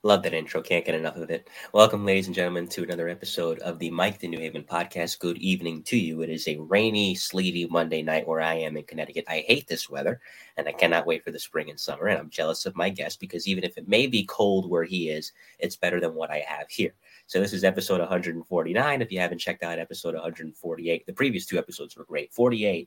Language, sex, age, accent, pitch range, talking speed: English, male, 30-49, American, 80-95 Hz, 245 wpm